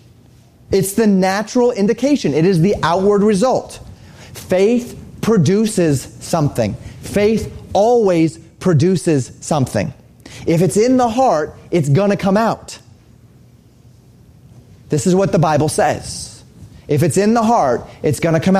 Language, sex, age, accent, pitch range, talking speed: English, male, 30-49, American, 140-200 Hz, 130 wpm